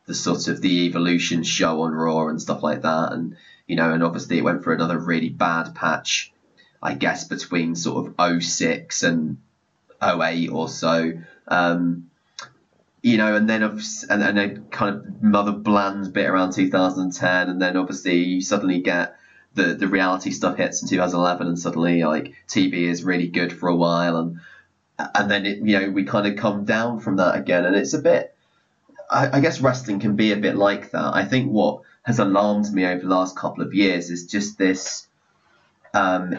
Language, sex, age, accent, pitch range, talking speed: English, male, 20-39, British, 85-105 Hz, 190 wpm